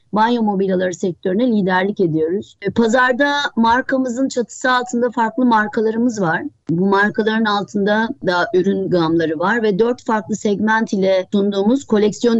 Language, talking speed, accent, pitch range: Turkish, 125 wpm, native, 190-240 Hz